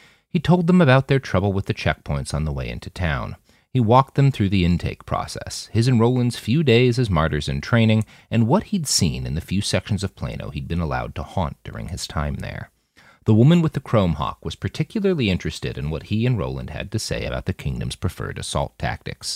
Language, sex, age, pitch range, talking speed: English, male, 30-49, 75-120 Hz, 225 wpm